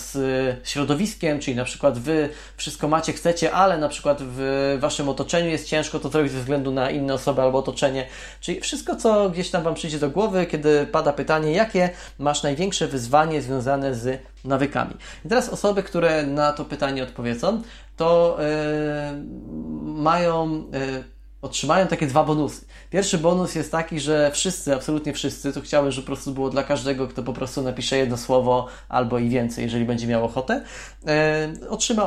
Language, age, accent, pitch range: Polish, 20-39, native, 135-160 Hz